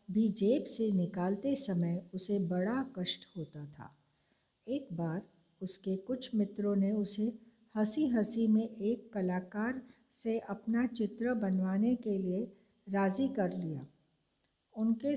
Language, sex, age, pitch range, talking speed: Hindi, female, 60-79, 190-240 Hz, 125 wpm